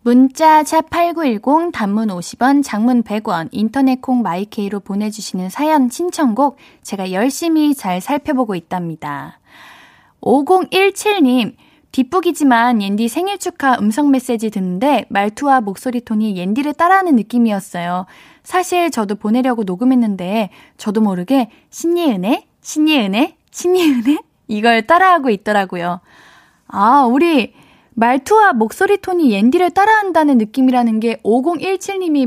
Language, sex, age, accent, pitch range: Korean, female, 20-39, native, 210-305 Hz